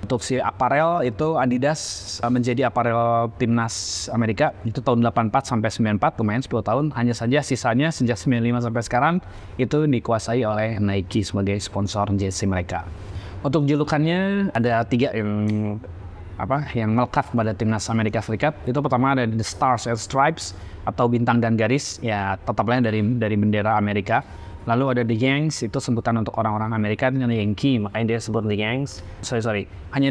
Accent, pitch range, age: native, 105-130 Hz, 20-39